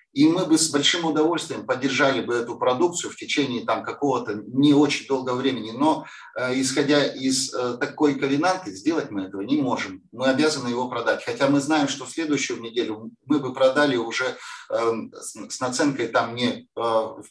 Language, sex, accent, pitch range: Russian, male, native, 130-185 Hz